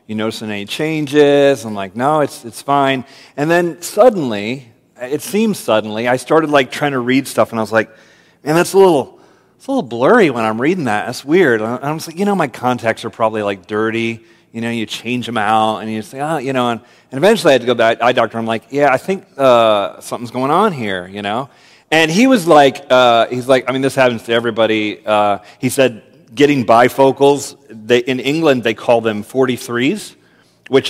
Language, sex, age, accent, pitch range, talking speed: English, male, 40-59, American, 115-145 Hz, 225 wpm